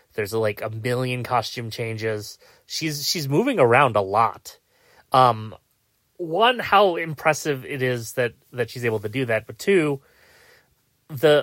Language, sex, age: English, male, 30-49